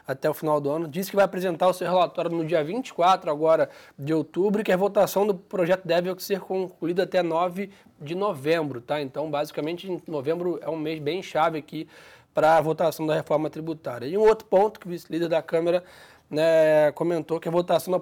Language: Portuguese